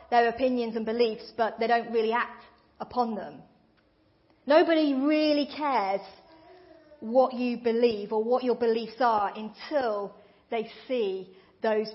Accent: British